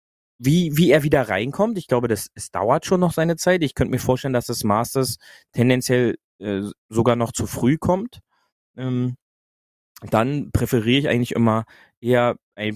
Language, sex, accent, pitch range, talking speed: German, male, German, 110-140 Hz, 170 wpm